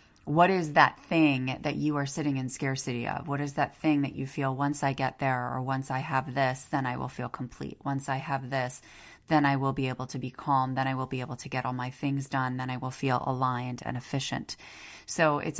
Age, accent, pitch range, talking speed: 30-49, American, 130-155 Hz, 245 wpm